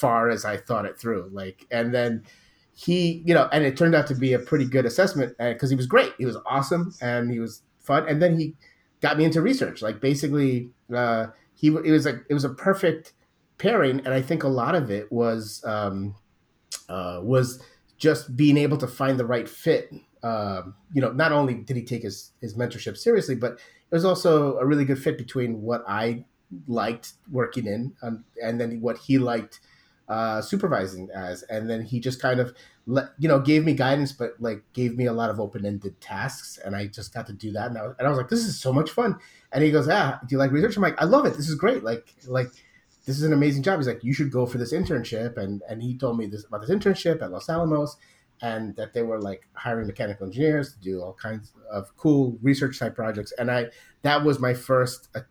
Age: 30-49